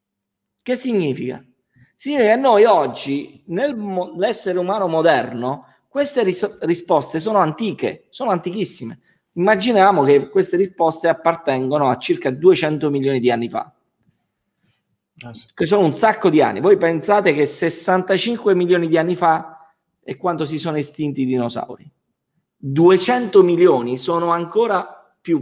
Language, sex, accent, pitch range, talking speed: Italian, male, native, 145-215 Hz, 125 wpm